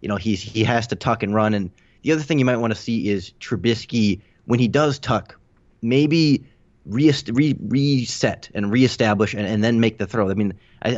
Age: 30-49